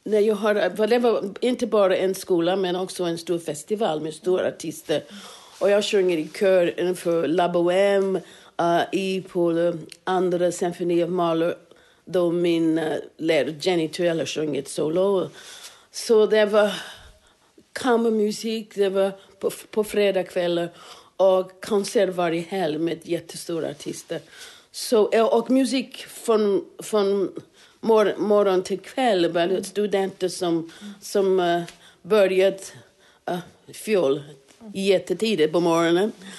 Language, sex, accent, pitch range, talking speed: Swedish, female, native, 175-220 Hz, 125 wpm